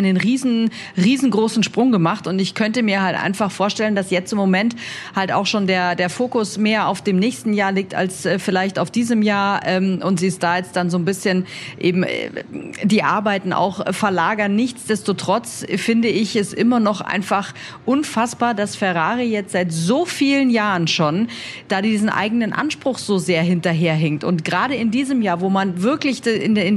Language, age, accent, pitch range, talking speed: German, 40-59, German, 190-230 Hz, 175 wpm